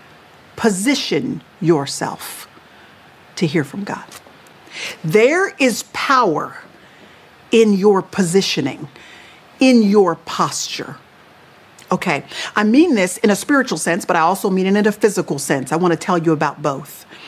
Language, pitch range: English, 200-260 Hz